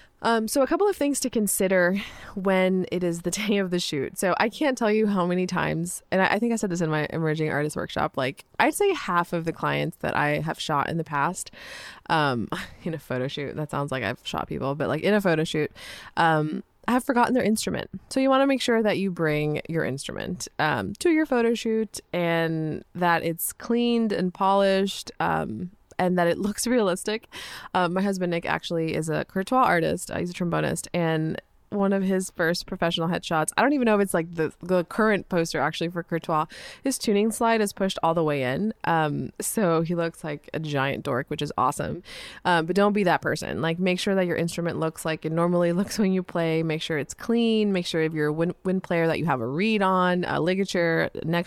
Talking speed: 225 wpm